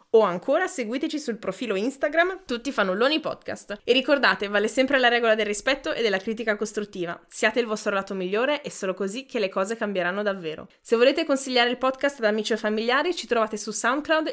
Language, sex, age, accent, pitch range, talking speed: Italian, female, 20-39, native, 205-265 Hz, 195 wpm